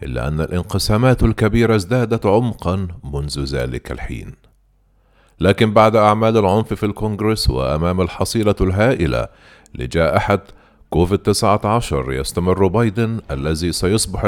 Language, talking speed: Arabic, 110 wpm